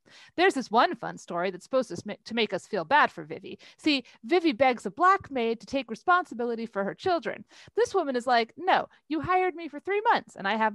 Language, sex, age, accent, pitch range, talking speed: English, female, 30-49, American, 220-315 Hz, 230 wpm